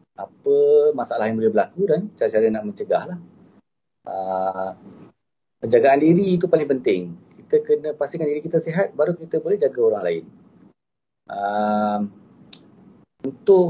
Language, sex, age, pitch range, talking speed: Malay, male, 30-49, 130-195 Hz, 130 wpm